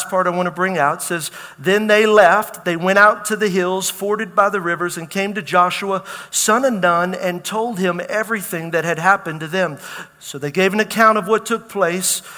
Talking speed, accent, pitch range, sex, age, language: 220 wpm, American, 170-210 Hz, male, 50-69, English